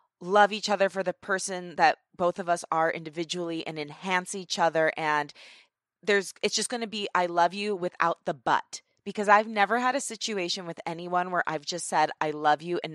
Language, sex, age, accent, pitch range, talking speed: English, female, 20-39, American, 165-210 Hz, 210 wpm